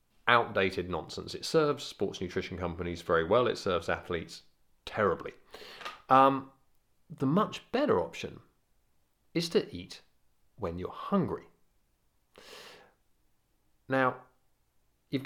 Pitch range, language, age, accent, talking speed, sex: 95-140 Hz, English, 40-59, British, 100 wpm, male